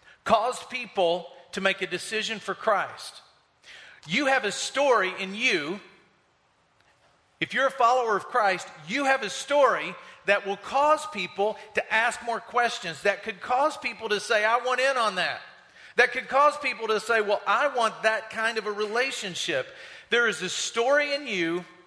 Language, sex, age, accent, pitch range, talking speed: English, male, 40-59, American, 200-250 Hz, 175 wpm